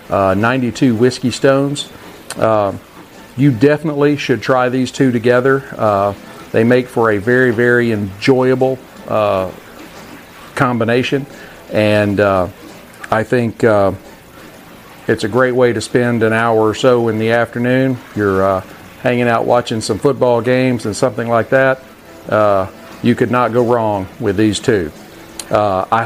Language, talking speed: English, 145 wpm